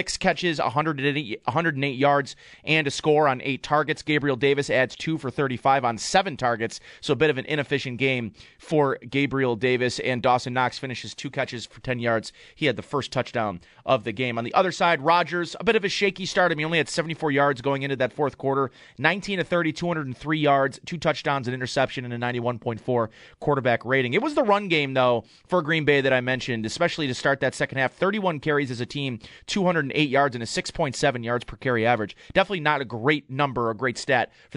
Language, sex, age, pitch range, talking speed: English, male, 30-49, 125-155 Hz, 210 wpm